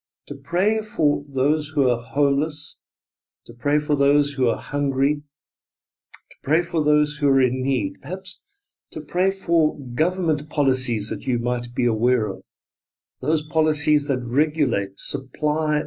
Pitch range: 125-165 Hz